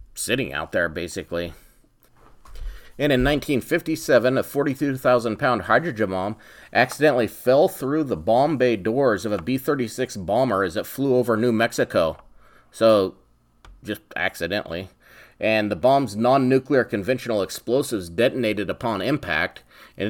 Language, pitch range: English, 95-130 Hz